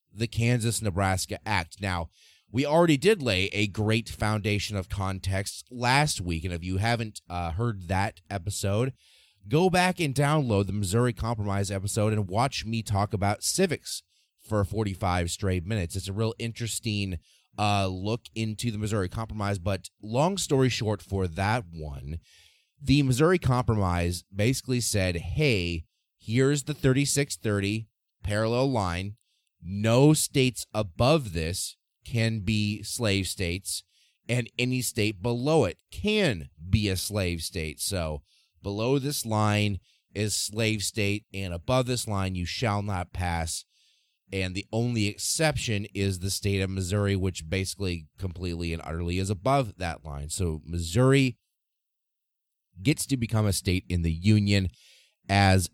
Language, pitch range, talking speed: English, 95-120 Hz, 140 wpm